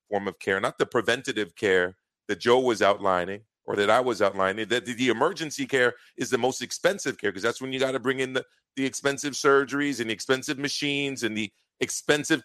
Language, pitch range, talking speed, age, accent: English, 120-165 Hz, 210 wpm, 40-59, American